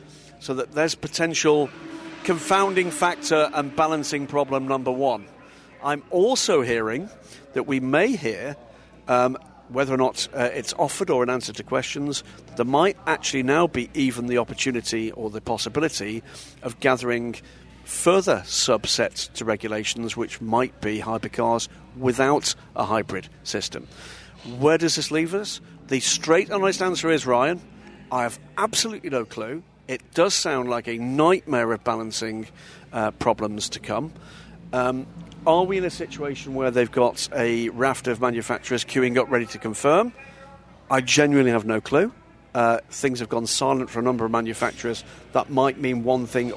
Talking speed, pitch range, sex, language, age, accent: 160 wpm, 115-150 Hz, male, English, 50-69, British